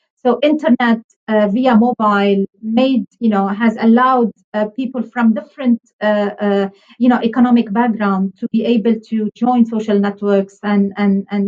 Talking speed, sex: 155 wpm, female